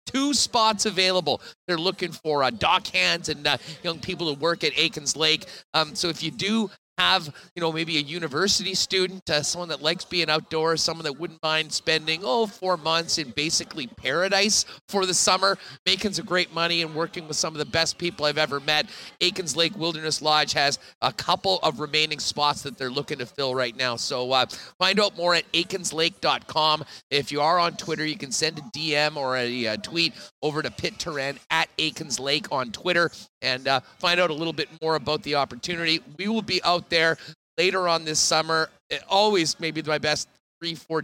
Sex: male